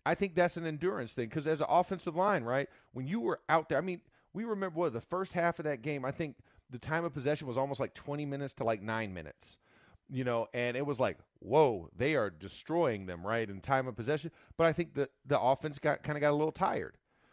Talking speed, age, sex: 250 wpm, 40-59, male